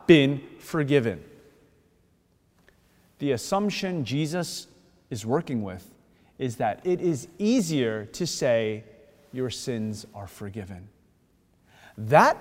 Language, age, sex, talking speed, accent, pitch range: English, 30-49, male, 95 wpm, American, 120-195 Hz